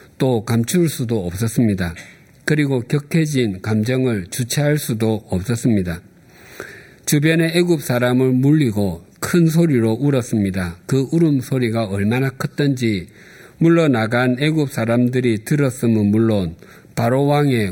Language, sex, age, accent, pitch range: Korean, male, 50-69, native, 110-145 Hz